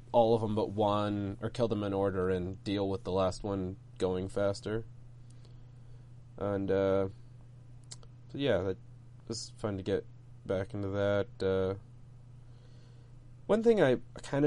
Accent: American